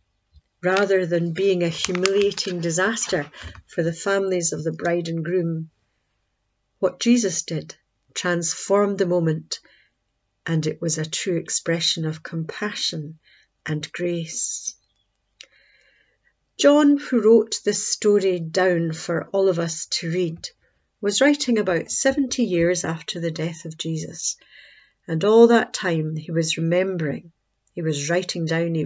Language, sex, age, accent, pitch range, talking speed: English, female, 50-69, British, 165-215 Hz, 135 wpm